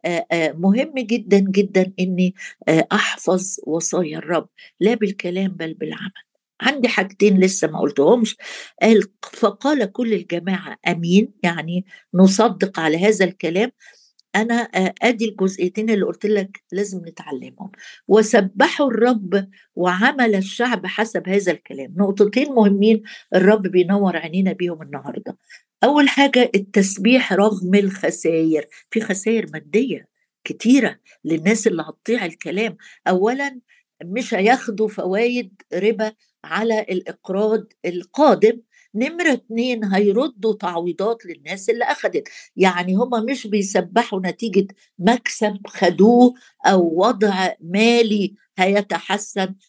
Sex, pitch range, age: female, 185-230 Hz, 60-79